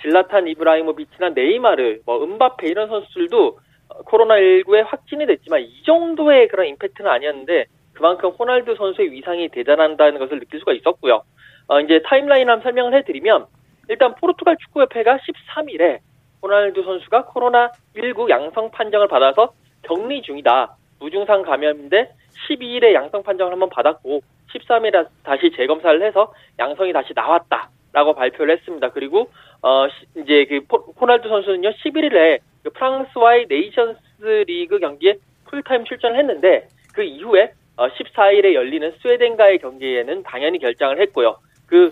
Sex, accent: male, native